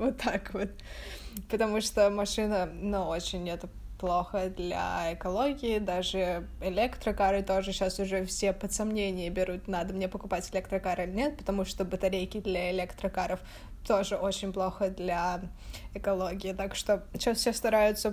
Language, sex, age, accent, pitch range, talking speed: Russian, female, 20-39, native, 190-215 Hz, 140 wpm